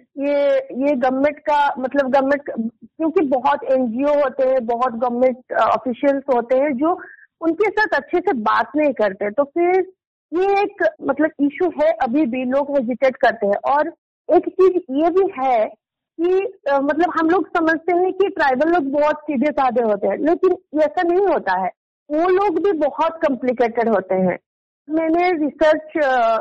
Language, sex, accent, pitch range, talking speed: Hindi, female, native, 255-325 Hz, 160 wpm